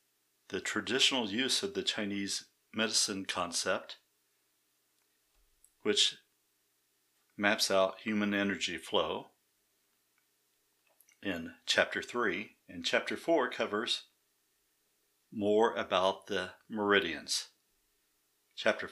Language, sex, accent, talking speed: English, male, American, 80 wpm